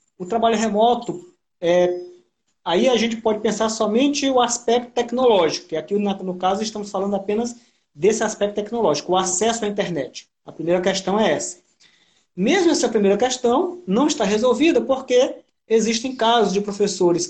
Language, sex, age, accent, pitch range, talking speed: Portuguese, male, 20-39, Brazilian, 180-230 Hz, 150 wpm